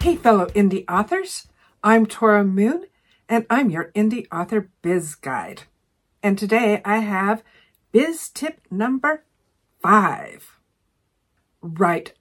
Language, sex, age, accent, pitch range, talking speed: English, female, 50-69, American, 180-235 Hz, 115 wpm